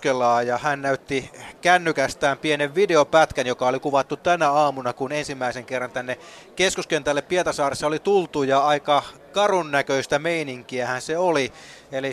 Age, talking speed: 30-49, 140 wpm